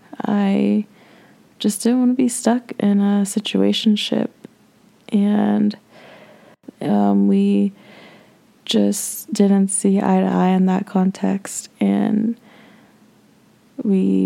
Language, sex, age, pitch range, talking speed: English, female, 20-39, 195-215 Hz, 100 wpm